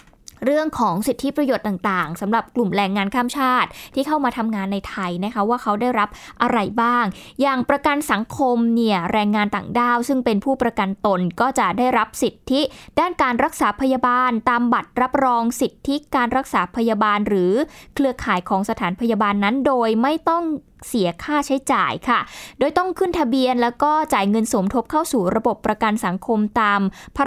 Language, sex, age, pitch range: Thai, female, 20-39, 210-265 Hz